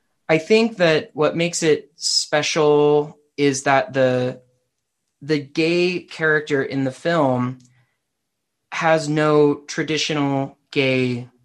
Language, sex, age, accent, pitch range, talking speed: English, male, 20-39, American, 125-155 Hz, 105 wpm